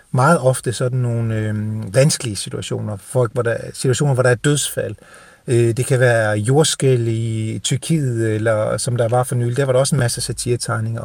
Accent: native